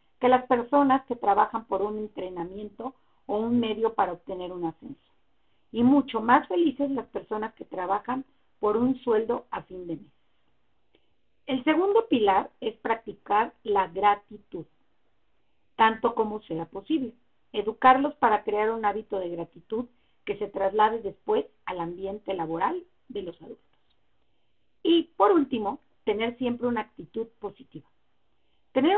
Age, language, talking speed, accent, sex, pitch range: 40-59, Spanish, 140 wpm, Mexican, female, 200-260 Hz